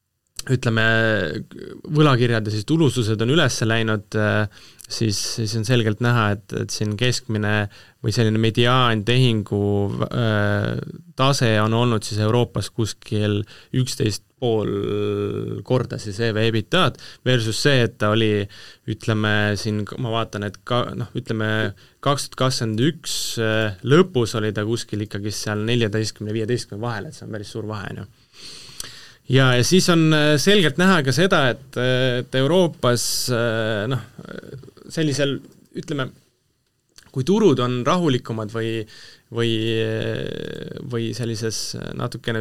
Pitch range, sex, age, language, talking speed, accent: 105-130 Hz, male, 20-39, English, 115 wpm, Finnish